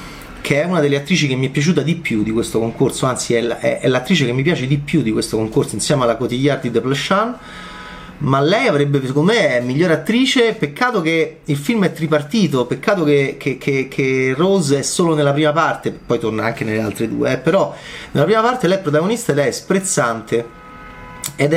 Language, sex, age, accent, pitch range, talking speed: Italian, male, 30-49, native, 130-180 Hz, 205 wpm